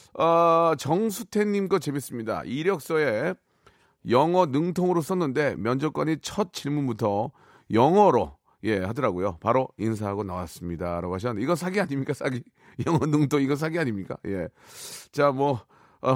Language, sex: Korean, male